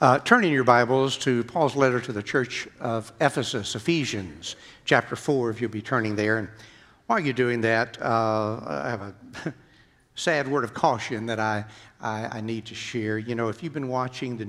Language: English